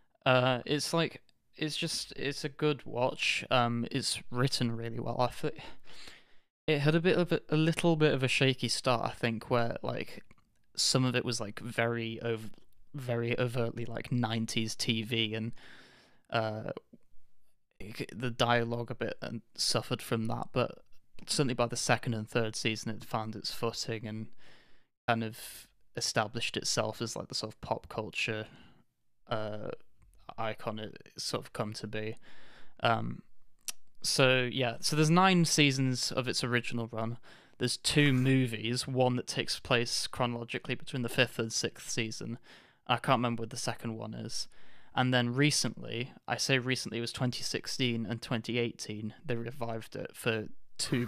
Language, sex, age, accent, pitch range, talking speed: English, male, 20-39, British, 115-130 Hz, 160 wpm